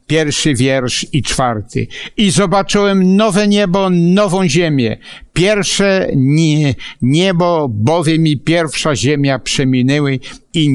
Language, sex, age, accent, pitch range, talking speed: Polish, male, 60-79, native, 115-170 Hz, 100 wpm